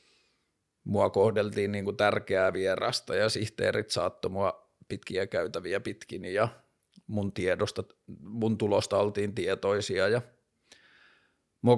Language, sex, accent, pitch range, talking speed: Finnish, male, native, 105-120 Hz, 85 wpm